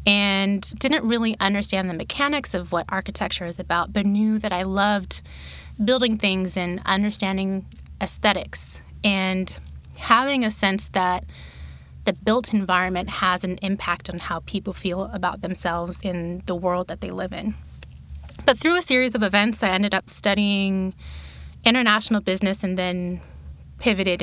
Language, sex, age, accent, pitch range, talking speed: English, female, 20-39, American, 180-215 Hz, 150 wpm